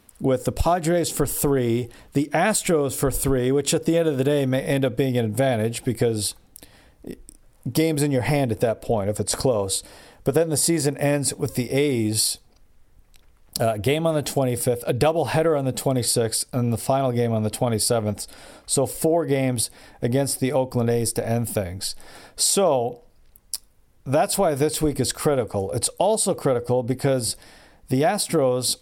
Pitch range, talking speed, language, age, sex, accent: 120-155 Hz, 170 wpm, English, 40-59, male, American